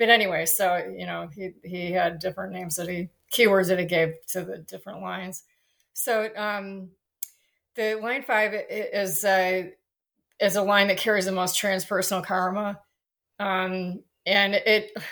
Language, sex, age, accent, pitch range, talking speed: English, female, 30-49, American, 185-205 Hz, 155 wpm